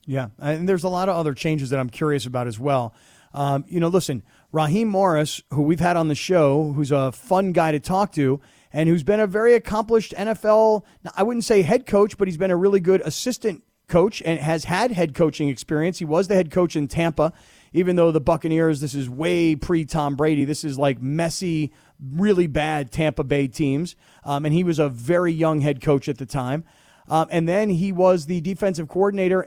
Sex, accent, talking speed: male, American, 215 wpm